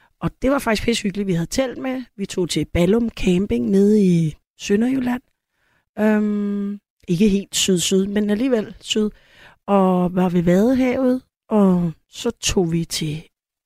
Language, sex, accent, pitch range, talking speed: Danish, female, native, 180-230 Hz, 150 wpm